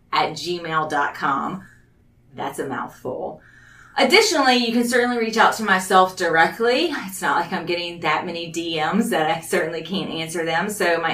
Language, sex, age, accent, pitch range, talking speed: English, female, 30-49, American, 155-195 Hz, 160 wpm